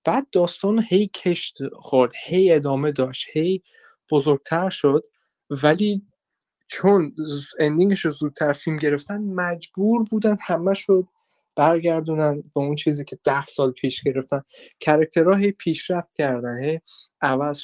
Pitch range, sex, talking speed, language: 140-200 Hz, male, 125 wpm, Persian